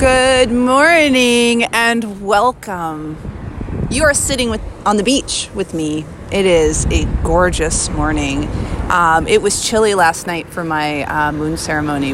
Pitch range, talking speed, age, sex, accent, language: 160-230 Hz, 145 wpm, 30-49, female, American, English